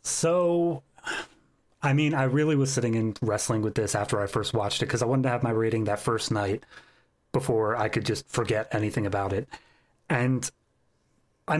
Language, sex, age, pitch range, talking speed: English, male, 30-49, 110-135 Hz, 185 wpm